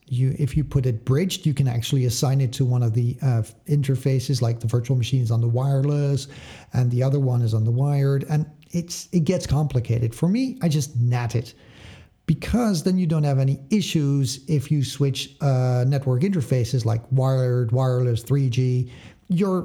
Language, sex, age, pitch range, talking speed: English, male, 50-69, 125-170 Hz, 190 wpm